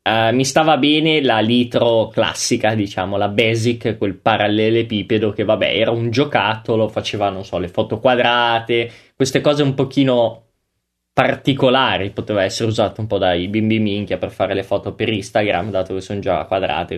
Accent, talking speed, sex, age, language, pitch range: native, 165 wpm, male, 20-39, Italian, 110-140 Hz